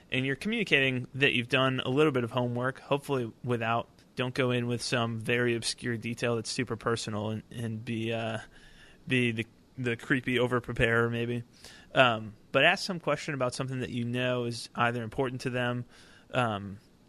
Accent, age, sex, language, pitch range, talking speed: American, 20-39, male, English, 115-130 Hz, 175 wpm